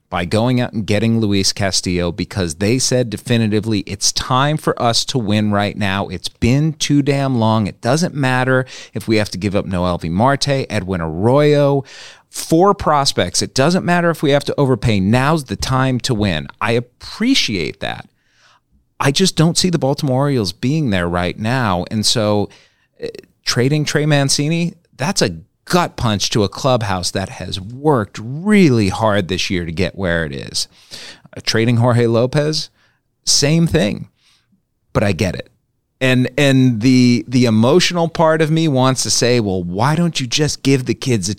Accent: American